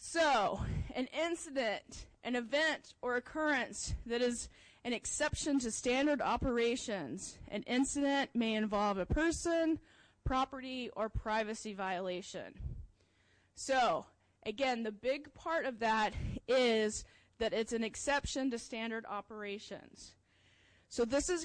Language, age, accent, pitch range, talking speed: English, 20-39, American, 230-280 Hz, 120 wpm